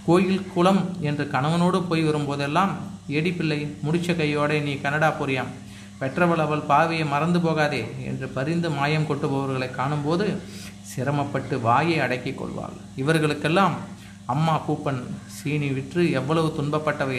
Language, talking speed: Tamil, 110 wpm